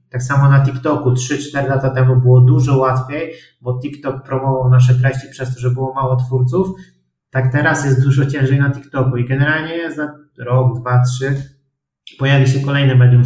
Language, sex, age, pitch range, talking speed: Polish, male, 20-39, 120-135 Hz, 170 wpm